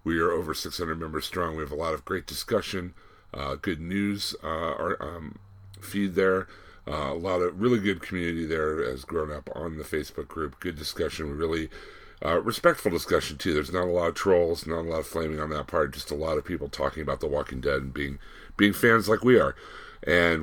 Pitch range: 75-100 Hz